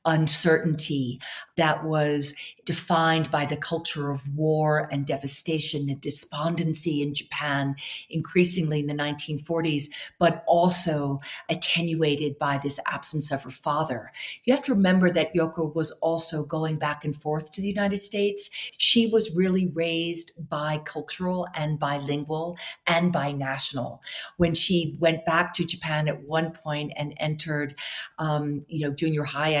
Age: 40-59